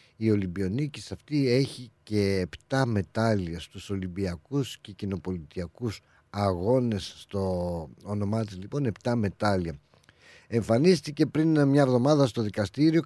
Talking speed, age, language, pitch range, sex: 105 wpm, 50-69, Greek, 100-125 Hz, male